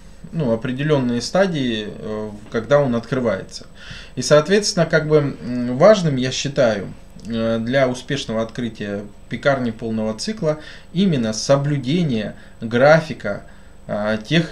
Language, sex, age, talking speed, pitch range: Russian, male, 20-39, 95 wpm, 115-150 Hz